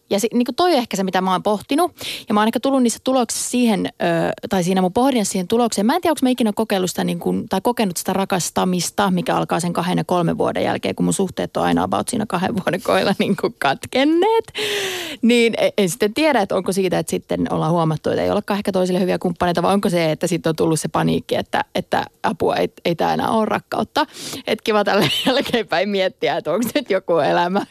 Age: 30-49